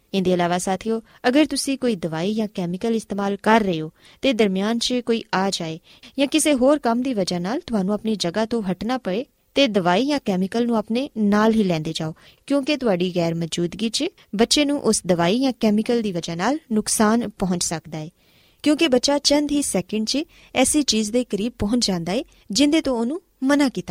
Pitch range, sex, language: 185-260 Hz, female, Punjabi